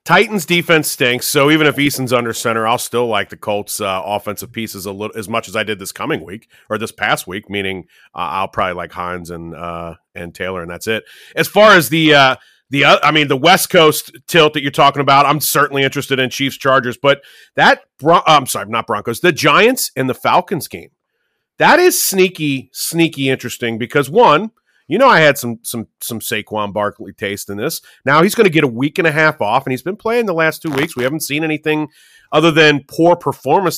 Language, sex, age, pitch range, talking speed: English, male, 30-49, 120-170 Hz, 225 wpm